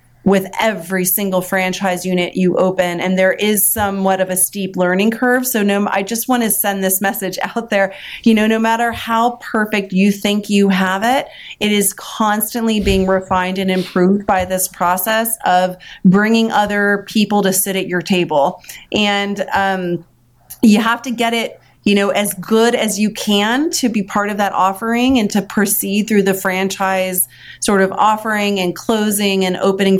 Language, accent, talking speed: English, American, 180 wpm